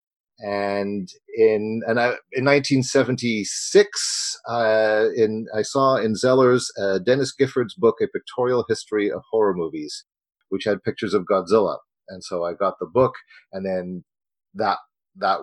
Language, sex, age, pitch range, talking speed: English, male, 40-59, 100-125 Hz, 145 wpm